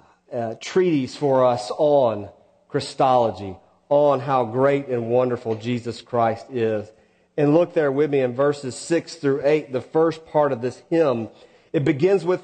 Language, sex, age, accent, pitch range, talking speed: English, male, 40-59, American, 125-175 Hz, 160 wpm